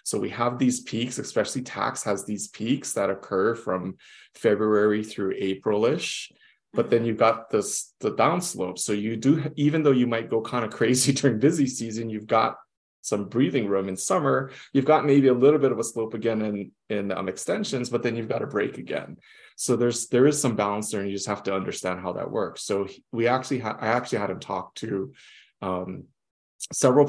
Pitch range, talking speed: 105-130 Hz, 205 wpm